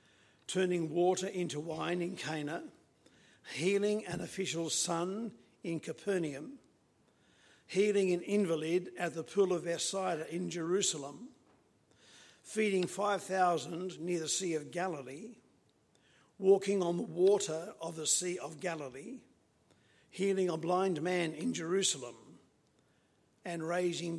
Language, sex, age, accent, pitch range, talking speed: English, male, 50-69, Australian, 165-195 Hz, 115 wpm